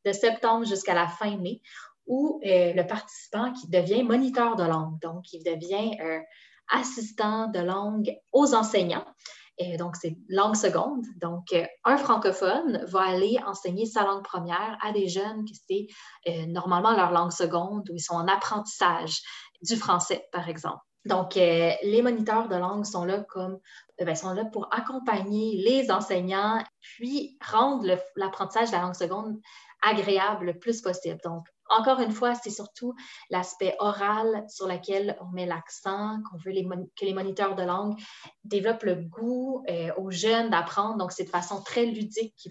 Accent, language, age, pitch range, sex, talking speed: Canadian, French, 20-39, 180-220 Hz, female, 175 wpm